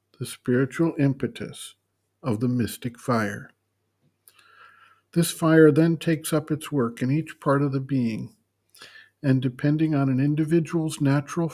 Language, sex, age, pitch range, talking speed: English, male, 60-79, 120-145 Hz, 135 wpm